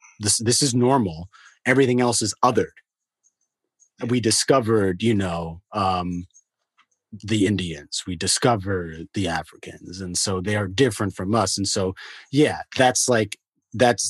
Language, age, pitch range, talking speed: English, 30-49, 95-120 Hz, 135 wpm